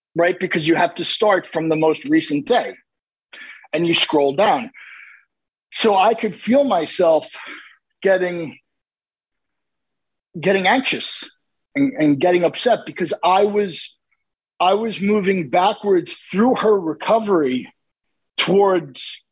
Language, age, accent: English, 50-69, American